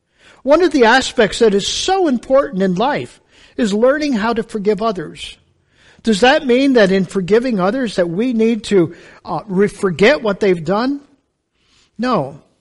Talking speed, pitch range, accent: 155 wpm, 205-275 Hz, American